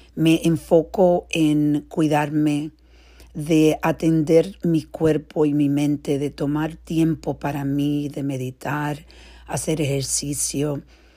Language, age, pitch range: Spanish, 50-69, 140-165 Hz